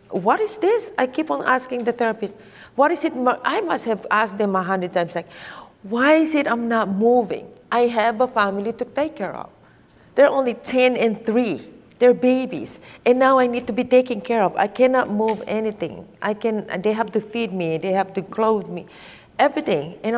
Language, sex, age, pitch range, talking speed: English, female, 40-59, 195-260 Hz, 205 wpm